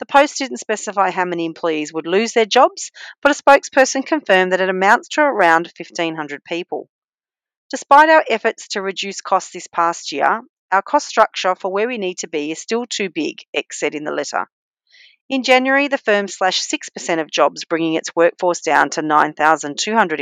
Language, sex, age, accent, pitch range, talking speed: English, female, 40-59, Australian, 170-235 Hz, 185 wpm